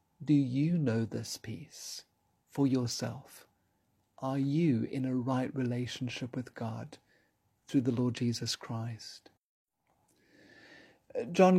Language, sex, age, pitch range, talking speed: English, male, 40-59, 120-150 Hz, 110 wpm